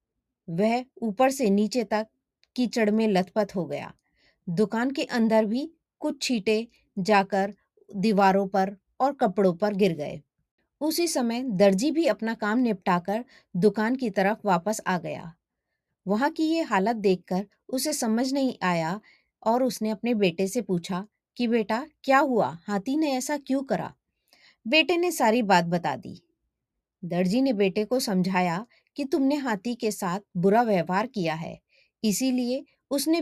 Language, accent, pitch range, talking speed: Hindi, native, 190-255 Hz, 150 wpm